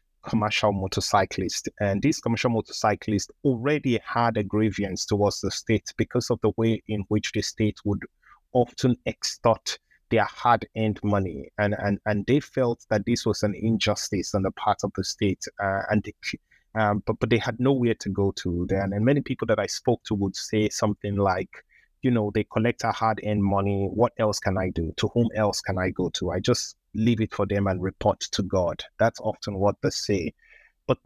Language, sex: English, male